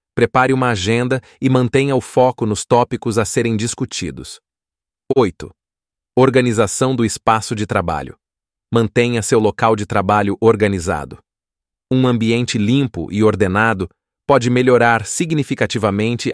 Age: 30-49